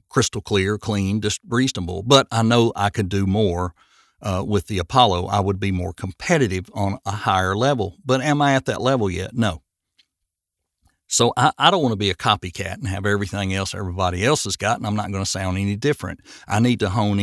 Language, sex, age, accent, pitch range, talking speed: English, male, 60-79, American, 95-120 Hz, 215 wpm